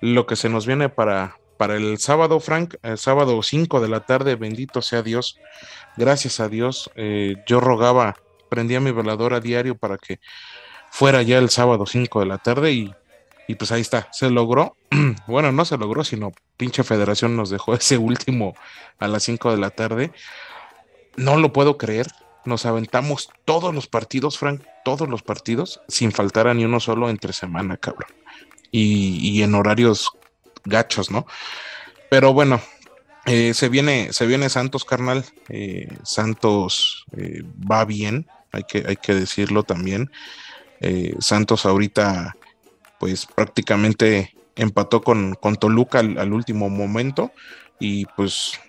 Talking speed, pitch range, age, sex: 155 wpm, 105-130 Hz, 30-49, male